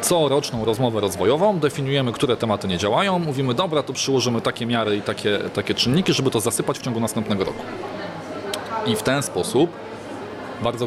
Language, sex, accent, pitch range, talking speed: Polish, male, native, 110-130 Hz, 165 wpm